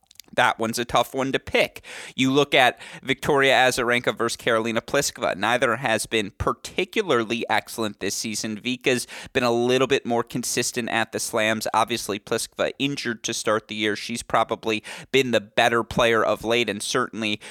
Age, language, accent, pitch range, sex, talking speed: 30-49, English, American, 110-125 Hz, male, 170 wpm